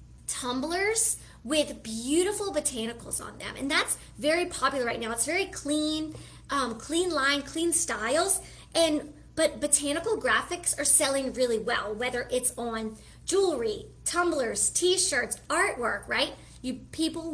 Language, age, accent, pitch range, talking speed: English, 30-49, American, 250-320 Hz, 130 wpm